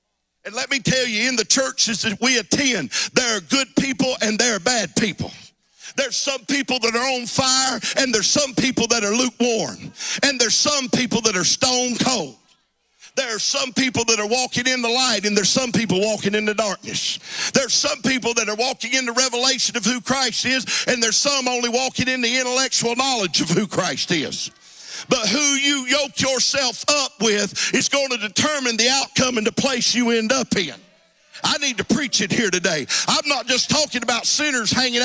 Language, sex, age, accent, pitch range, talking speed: English, male, 50-69, American, 225-270 Hz, 205 wpm